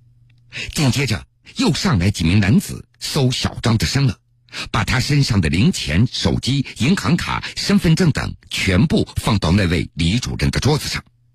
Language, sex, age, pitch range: Chinese, male, 60-79, 110-130 Hz